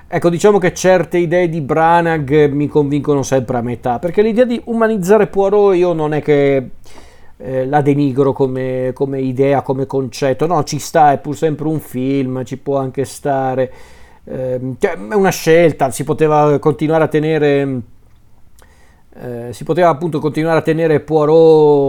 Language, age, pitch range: Italian, 40-59, 130-170 Hz